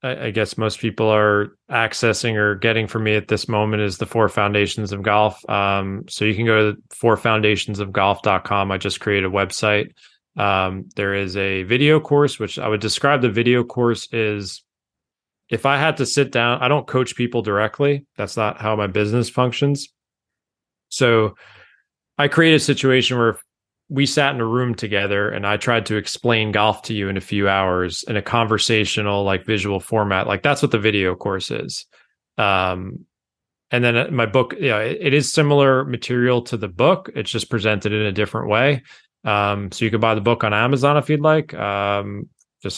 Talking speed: 190 wpm